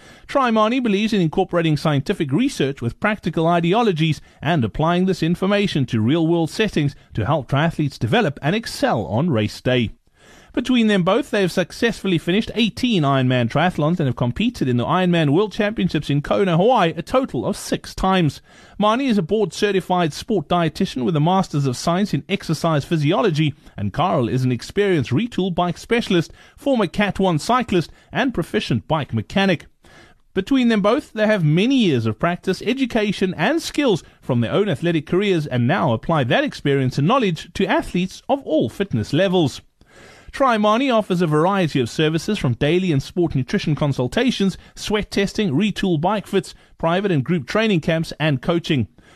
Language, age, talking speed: English, 30-49, 165 wpm